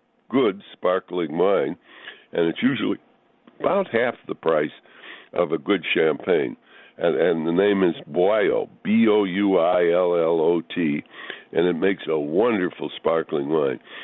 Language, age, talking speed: English, 60-79, 120 wpm